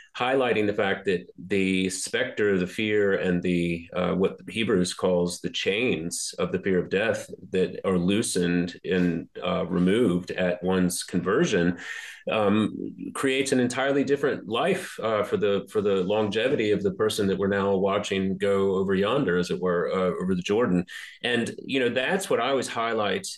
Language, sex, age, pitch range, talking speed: English, male, 30-49, 90-100 Hz, 175 wpm